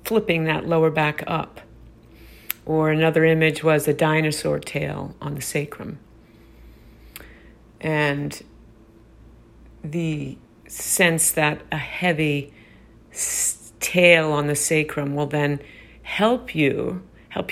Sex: female